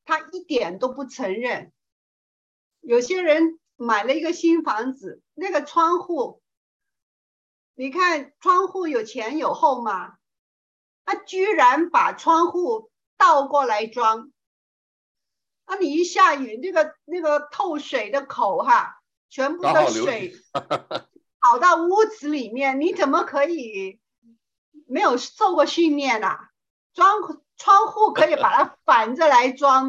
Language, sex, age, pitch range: Chinese, female, 50-69, 265-360 Hz